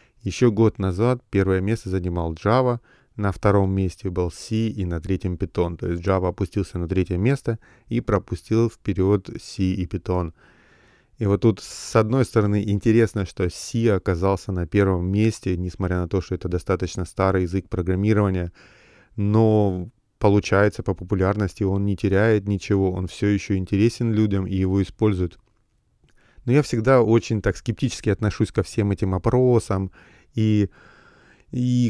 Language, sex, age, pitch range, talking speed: Russian, male, 30-49, 95-115 Hz, 150 wpm